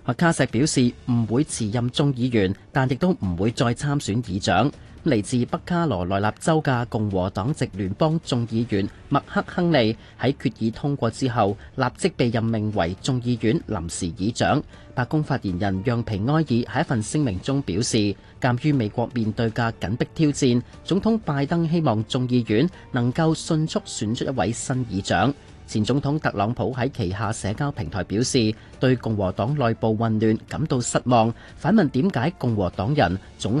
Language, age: Chinese, 30-49